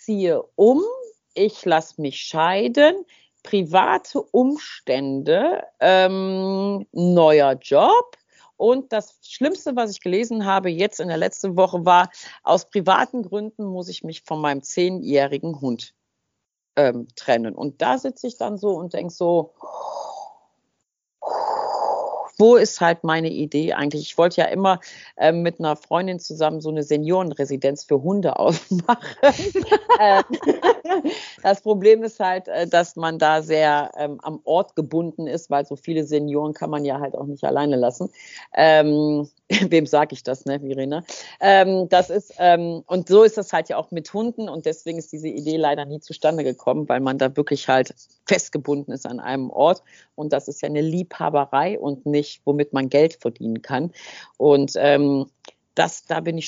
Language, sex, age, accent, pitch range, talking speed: German, female, 50-69, German, 145-195 Hz, 160 wpm